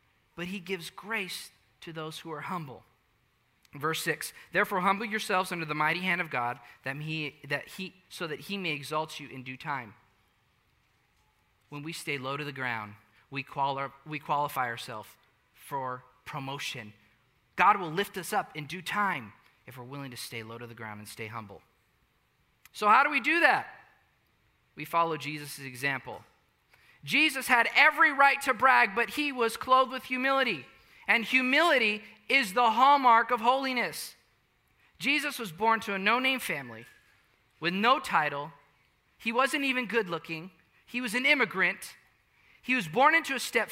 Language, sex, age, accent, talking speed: English, male, 20-39, American, 160 wpm